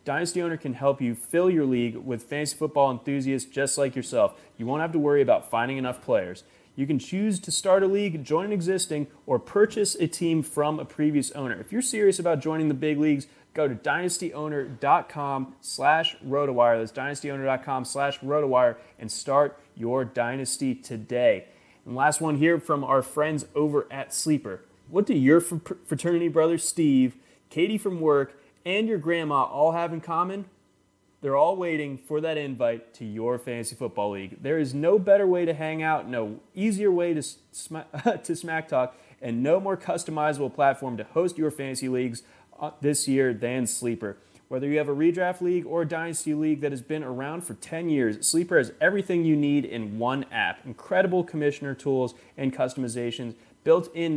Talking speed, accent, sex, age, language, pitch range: 175 wpm, American, male, 30-49, English, 130-165 Hz